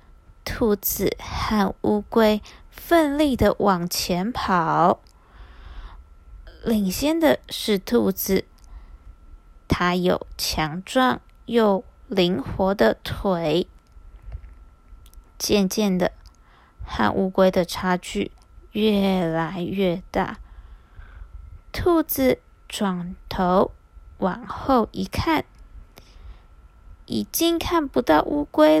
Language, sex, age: Chinese, female, 20-39